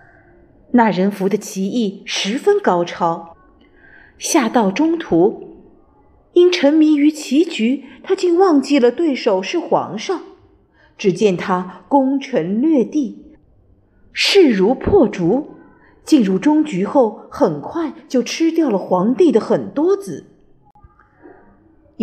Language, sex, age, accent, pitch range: Chinese, female, 50-69, native, 210-310 Hz